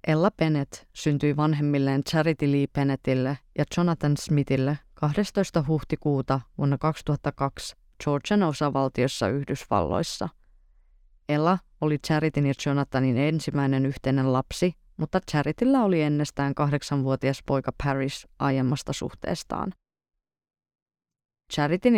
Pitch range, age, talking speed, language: 135-155 Hz, 30-49, 95 wpm, Finnish